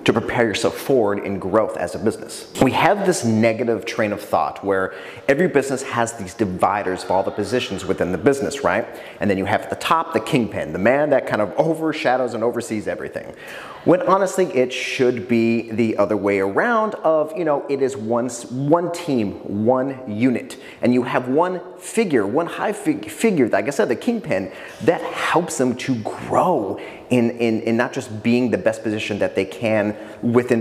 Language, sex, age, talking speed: English, male, 30-49, 195 wpm